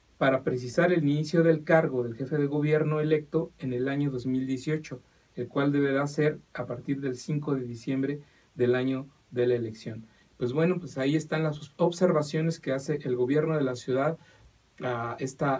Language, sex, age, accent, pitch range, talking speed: English, male, 40-59, Mexican, 125-155 Hz, 175 wpm